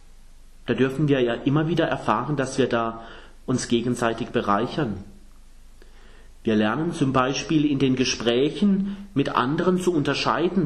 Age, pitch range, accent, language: 30-49, 115-160 Hz, German, German